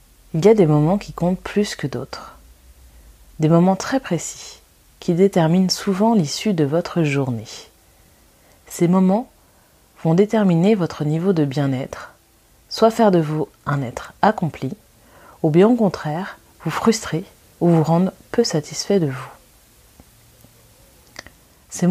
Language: French